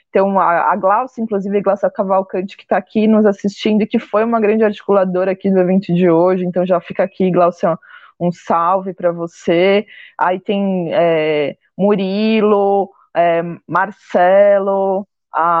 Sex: female